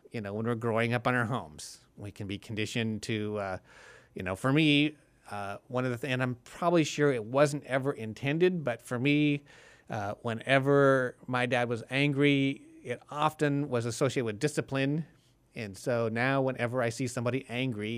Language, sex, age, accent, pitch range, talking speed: English, male, 30-49, American, 110-140 Hz, 185 wpm